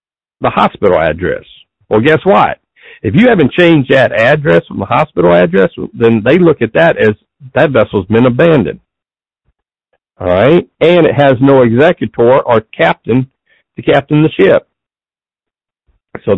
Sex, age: male, 60-79